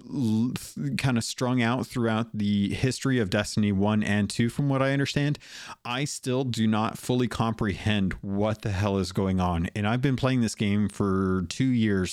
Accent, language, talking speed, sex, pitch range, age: American, English, 185 wpm, male, 95-115 Hz, 30-49